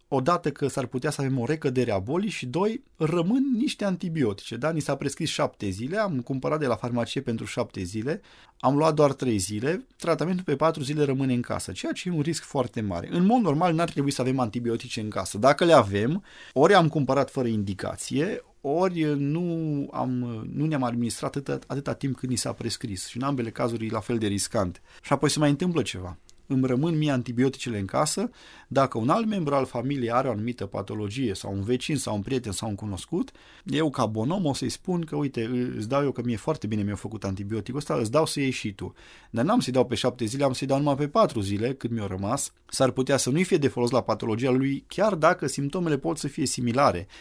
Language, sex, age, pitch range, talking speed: Romanian, male, 30-49, 110-150 Hz, 225 wpm